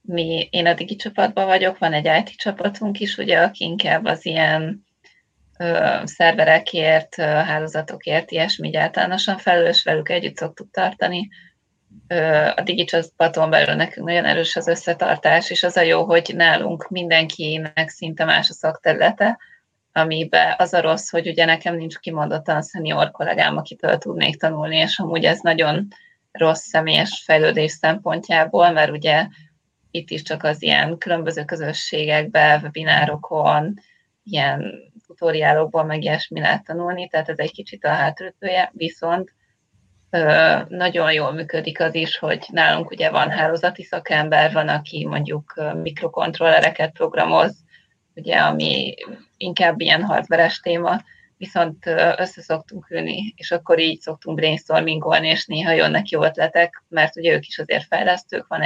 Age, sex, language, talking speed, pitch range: 30-49, female, Hungarian, 140 wpm, 160-180 Hz